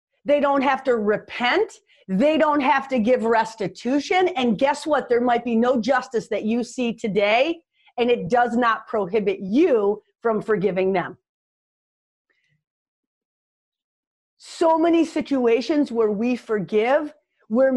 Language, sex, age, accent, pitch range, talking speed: English, female, 40-59, American, 225-285 Hz, 130 wpm